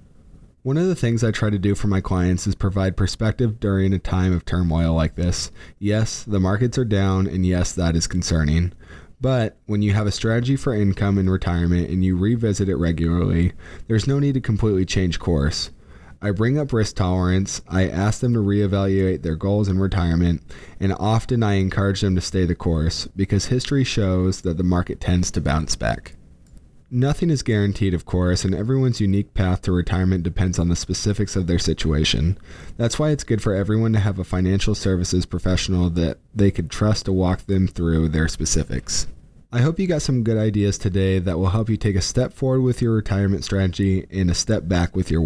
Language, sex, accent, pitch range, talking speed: English, male, American, 90-105 Hz, 200 wpm